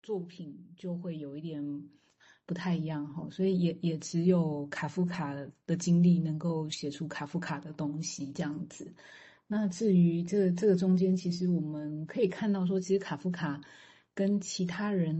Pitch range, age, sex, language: 155-185 Hz, 30-49, female, Chinese